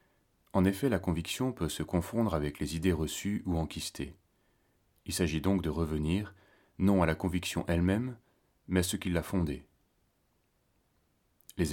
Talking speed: 155 wpm